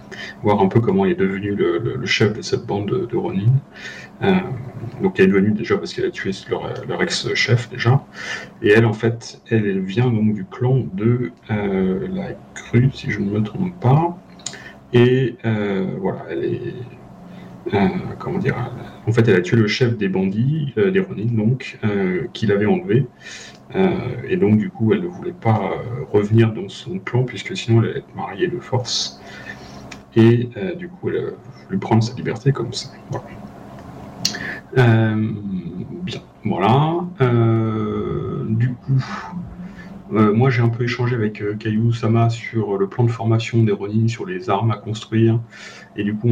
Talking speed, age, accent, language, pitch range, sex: 185 wpm, 40-59, French, French, 105-125 Hz, male